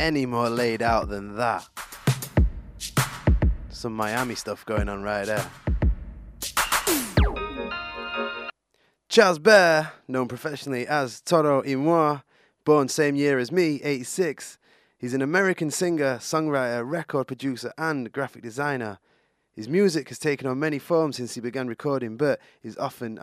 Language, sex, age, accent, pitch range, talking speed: English, male, 20-39, British, 110-145 Hz, 130 wpm